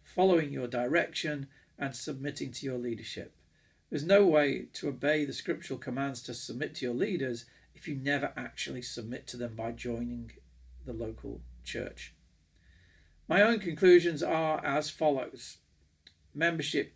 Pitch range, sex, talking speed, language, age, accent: 130-160 Hz, male, 140 wpm, English, 50-69, British